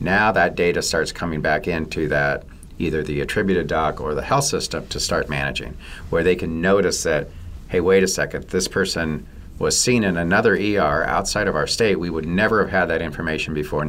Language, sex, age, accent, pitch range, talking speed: English, male, 50-69, American, 75-90 Hz, 205 wpm